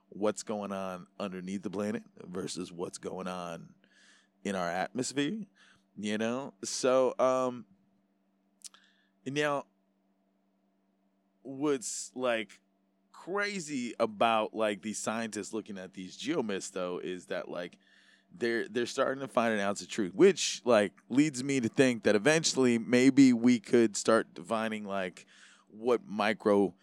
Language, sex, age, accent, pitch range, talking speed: English, male, 20-39, American, 95-120 Hz, 130 wpm